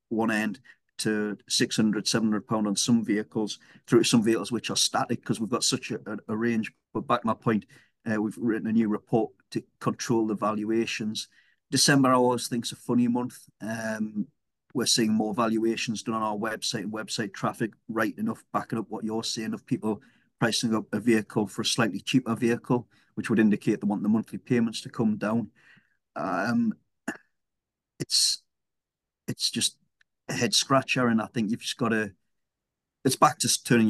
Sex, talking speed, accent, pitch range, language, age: male, 180 wpm, British, 105-120 Hz, English, 40-59